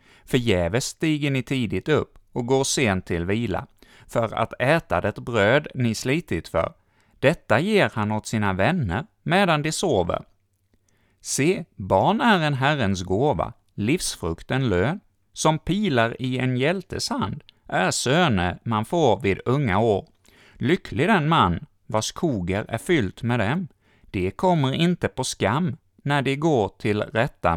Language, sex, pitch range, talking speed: Swedish, male, 100-140 Hz, 150 wpm